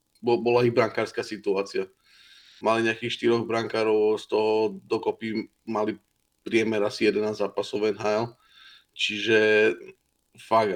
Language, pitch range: Slovak, 110-125 Hz